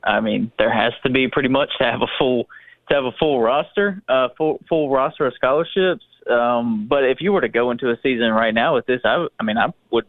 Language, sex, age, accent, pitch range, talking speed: English, male, 20-39, American, 115-135 Hz, 255 wpm